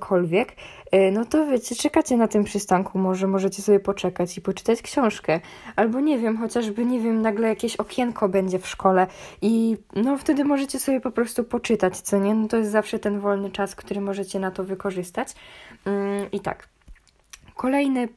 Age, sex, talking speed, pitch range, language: 10-29, female, 170 wpm, 195-240 Hz, Polish